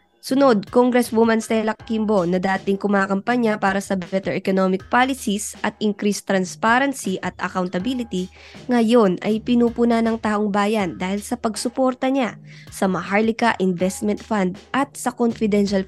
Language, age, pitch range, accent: English, 20-39, 195-240 Hz, Filipino